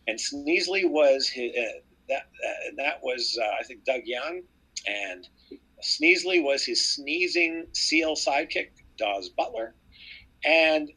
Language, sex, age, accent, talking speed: English, male, 50-69, American, 125 wpm